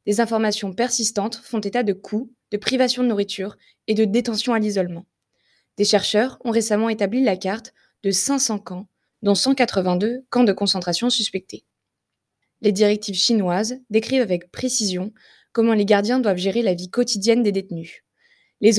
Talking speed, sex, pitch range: 155 wpm, female, 195-230 Hz